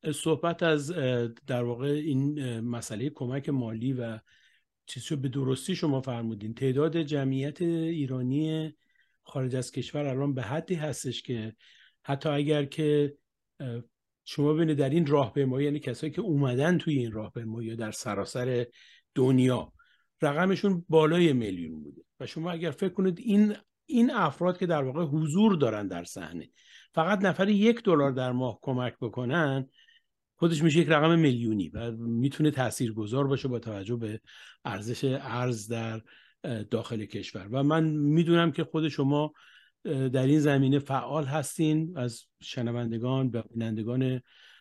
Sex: male